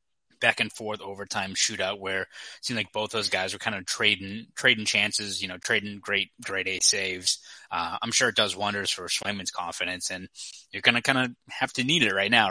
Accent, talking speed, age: American, 220 wpm, 20-39